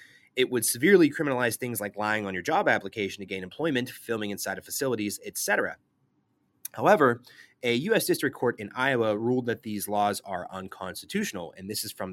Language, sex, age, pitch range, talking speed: English, male, 30-49, 110-140 Hz, 180 wpm